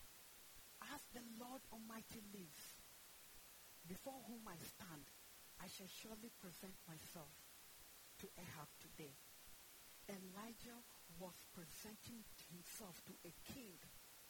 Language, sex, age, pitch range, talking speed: English, female, 50-69, 185-250 Hz, 100 wpm